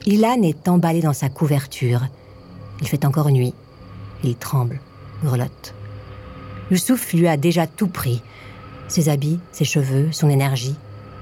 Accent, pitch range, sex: French, 115-160 Hz, female